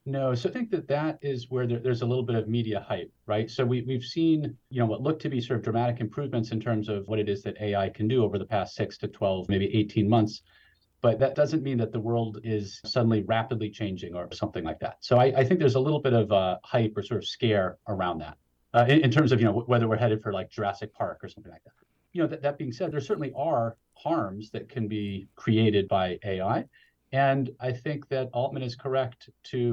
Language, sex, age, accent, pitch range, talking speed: English, male, 40-59, American, 105-135 Hz, 250 wpm